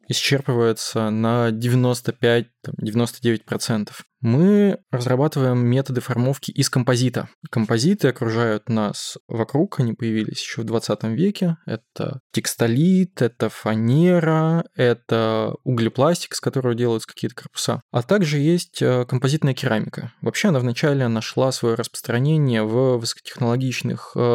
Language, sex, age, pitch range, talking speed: Russian, male, 20-39, 115-145 Hz, 105 wpm